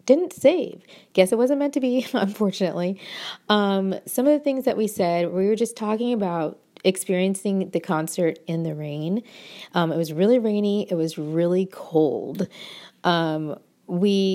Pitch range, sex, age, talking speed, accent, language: 165-210 Hz, female, 30-49, 165 wpm, American, English